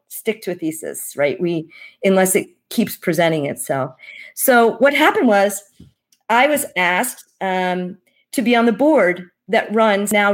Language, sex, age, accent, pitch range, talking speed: English, female, 40-59, American, 180-245 Hz, 155 wpm